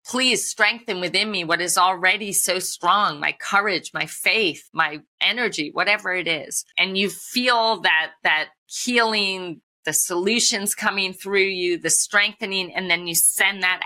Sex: female